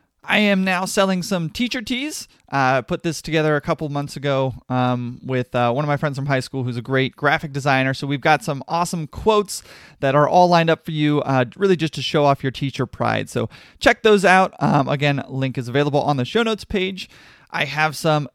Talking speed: 225 wpm